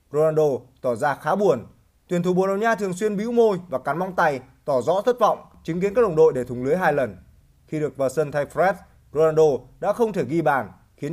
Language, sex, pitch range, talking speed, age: Vietnamese, male, 140-190 Hz, 230 wpm, 20-39